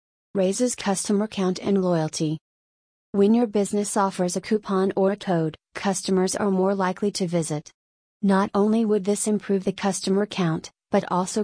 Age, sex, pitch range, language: 30-49, female, 175-205 Hz, English